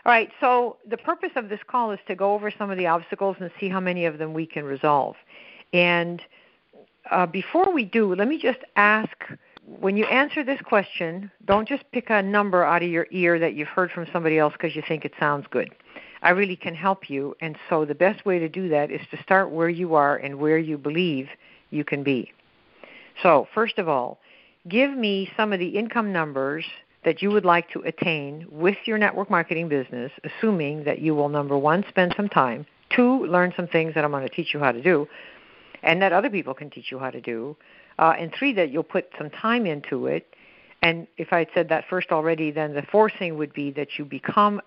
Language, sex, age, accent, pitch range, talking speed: English, female, 60-79, American, 150-195 Hz, 225 wpm